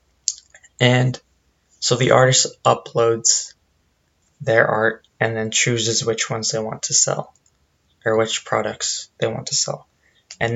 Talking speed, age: 135 wpm, 20-39